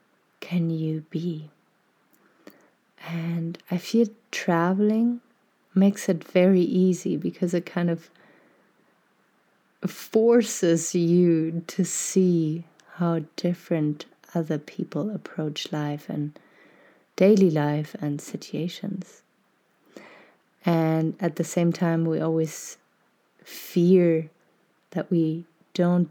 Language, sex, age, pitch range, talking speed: English, female, 30-49, 160-190 Hz, 95 wpm